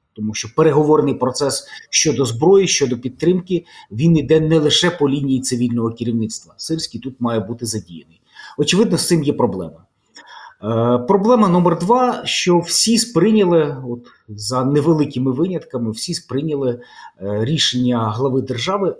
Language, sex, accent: Ukrainian, male, native